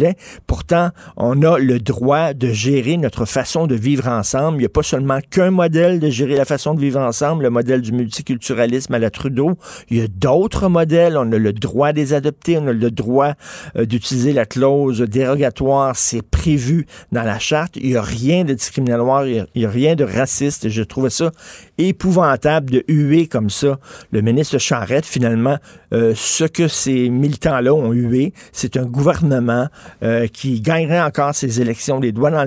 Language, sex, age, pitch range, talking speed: French, male, 50-69, 120-155 Hz, 190 wpm